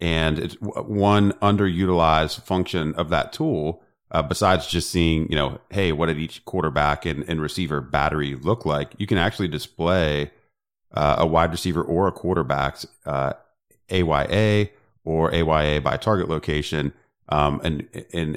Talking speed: 150 wpm